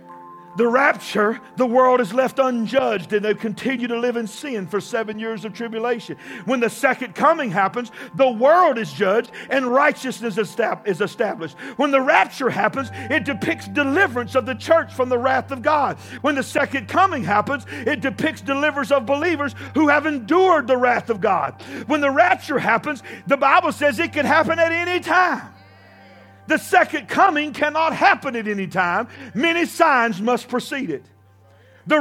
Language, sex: English, male